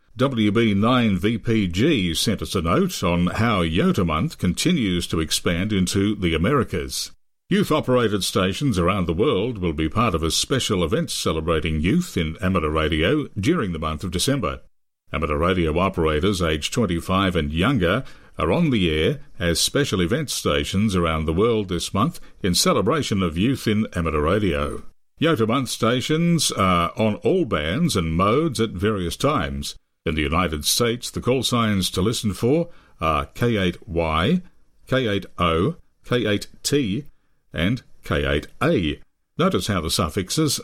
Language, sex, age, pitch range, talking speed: English, male, 60-79, 85-115 Hz, 140 wpm